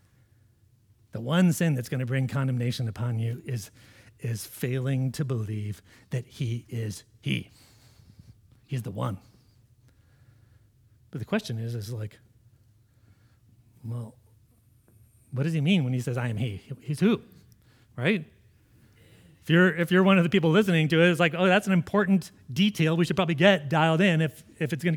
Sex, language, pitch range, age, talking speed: male, English, 115-155 Hz, 40-59, 165 wpm